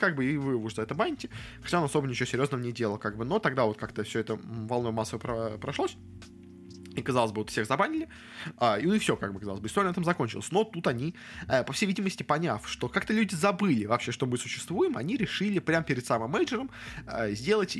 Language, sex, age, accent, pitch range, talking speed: Russian, male, 20-39, native, 115-150 Hz, 225 wpm